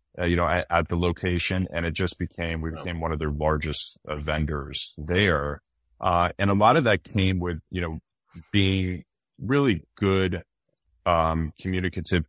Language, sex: English, male